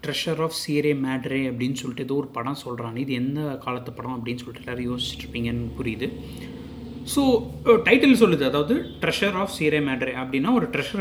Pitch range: 130-185 Hz